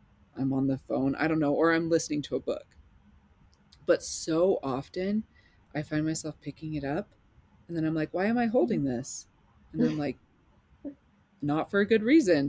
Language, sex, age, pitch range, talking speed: English, female, 30-49, 140-185 Hz, 190 wpm